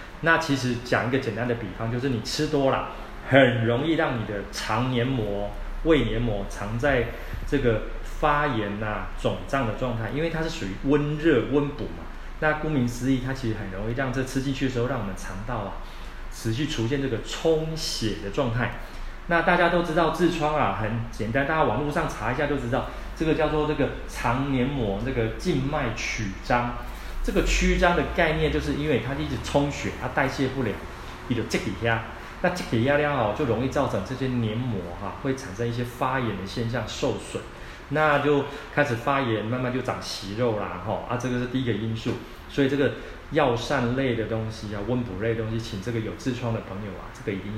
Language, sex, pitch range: Chinese, male, 110-145 Hz